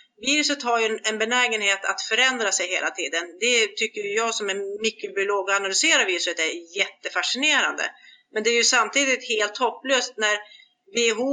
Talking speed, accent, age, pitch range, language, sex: 160 wpm, native, 40-59, 195-275 Hz, Swedish, female